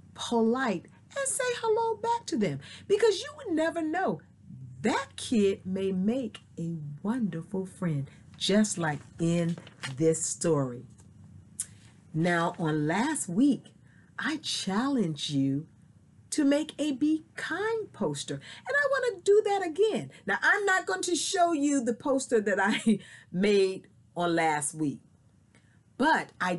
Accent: American